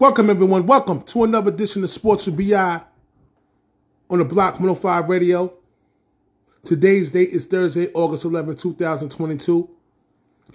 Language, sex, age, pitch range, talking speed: English, male, 30-49, 150-185 Hz, 140 wpm